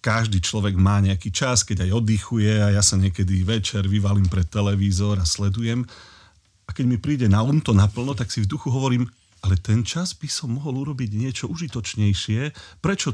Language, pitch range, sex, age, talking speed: Slovak, 95-120 Hz, male, 40-59, 185 wpm